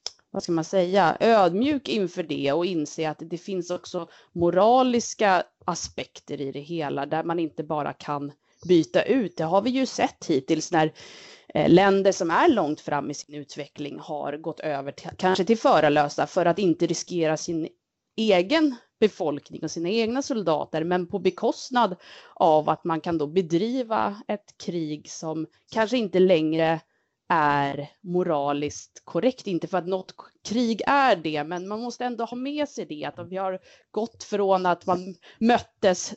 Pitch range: 160-205 Hz